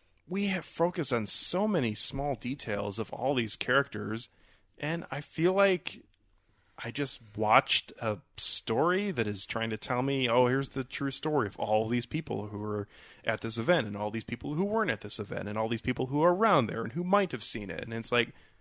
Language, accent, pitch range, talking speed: English, American, 110-160 Hz, 215 wpm